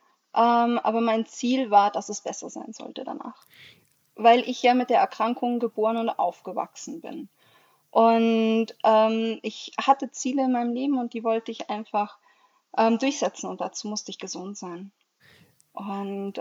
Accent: German